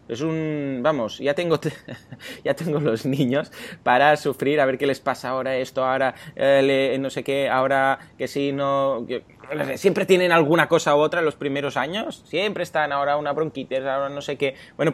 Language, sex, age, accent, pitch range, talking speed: Spanish, male, 20-39, Spanish, 115-150 Hz, 195 wpm